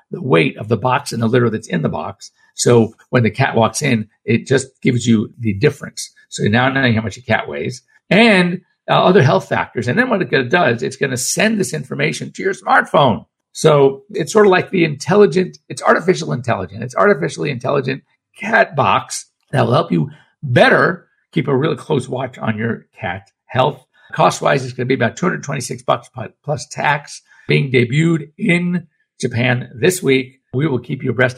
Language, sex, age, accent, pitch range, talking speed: English, male, 50-69, American, 115-165 Hz, 195 wpm